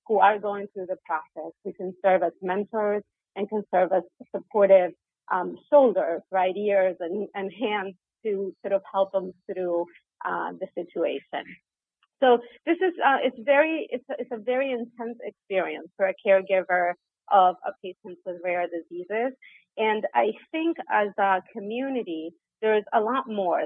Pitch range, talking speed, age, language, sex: 185-220 Hz, 155 wpm, 30-49, English, female